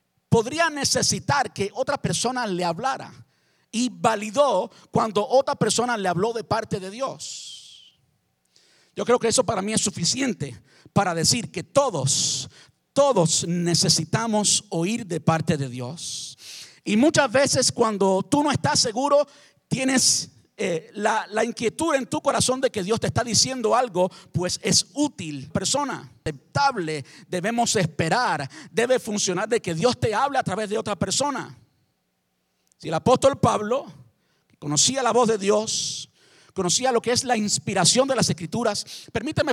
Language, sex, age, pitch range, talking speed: Spanish, male, 50-69, 165-240 Hz, 150 wpm